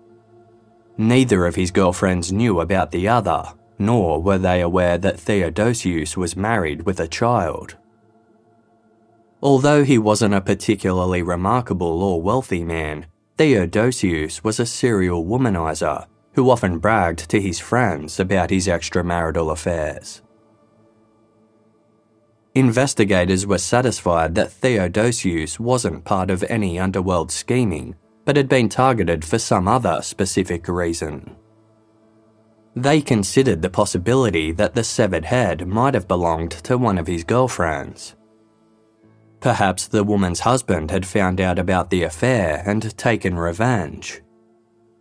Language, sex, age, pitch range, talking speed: English, male, 20-39, 90-115 Hz, 125 wpm